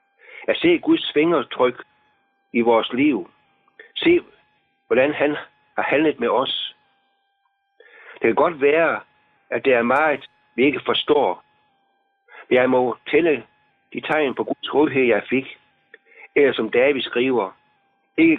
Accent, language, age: native, Danish, 60-79